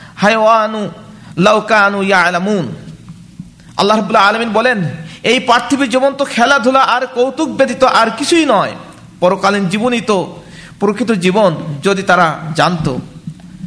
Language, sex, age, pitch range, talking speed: Bengali, male, 50-69, 195-250 Hz, 90 wpm